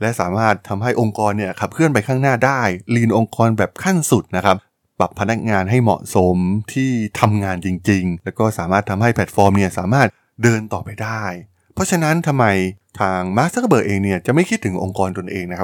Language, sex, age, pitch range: Thai, male, 20-39, 95-120 Hz